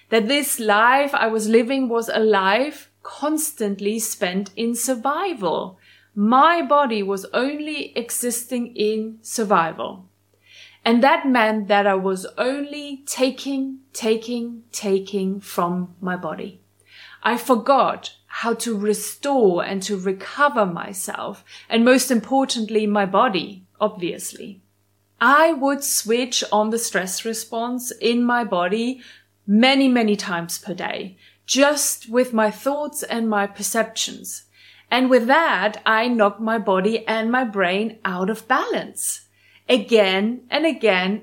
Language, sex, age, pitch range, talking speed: English, female, 30-49, 205-255 Hz, 125 wpm